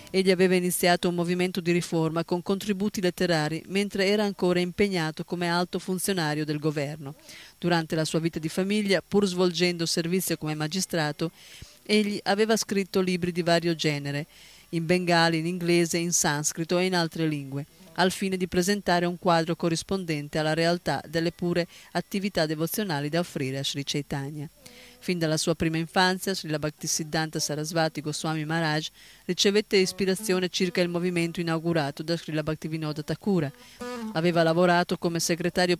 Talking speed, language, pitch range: 150 wpm, Italian, 160-185 Hz